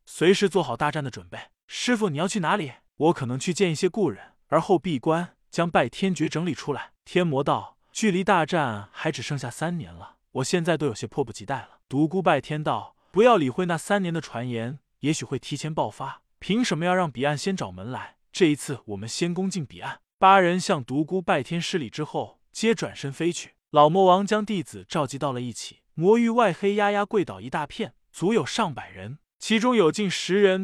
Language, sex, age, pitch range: Chinese, male, 20-39, 140-195 Hz